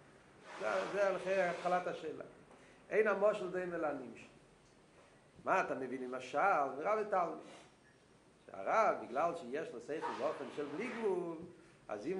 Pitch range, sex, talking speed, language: 155-210 Hz, male, 135 wpm, Hebrew